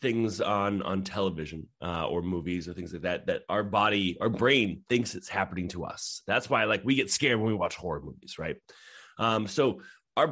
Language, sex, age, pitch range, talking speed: English, male, 30-49, 95-125 Hz, 210 wpm